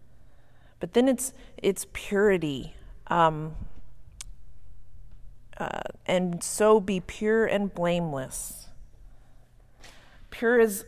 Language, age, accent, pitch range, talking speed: English, 40-59, American, 140-195 Hz, 85 wpm